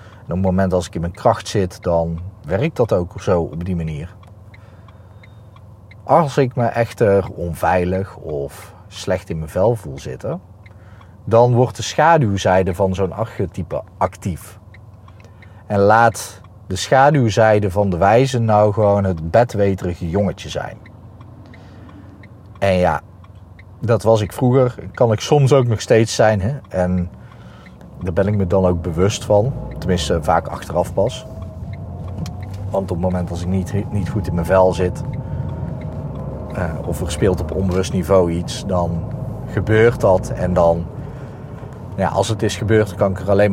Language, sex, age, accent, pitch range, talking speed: Dutch, male, 40-59, Dutch, 90-110 Hz, 155 wpm